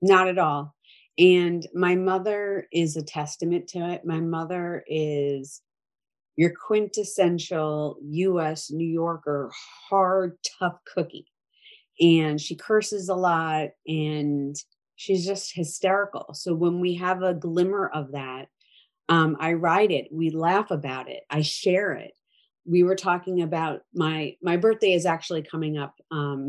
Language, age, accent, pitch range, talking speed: English, 30-49, American, 155-195 Hz, 140 wpm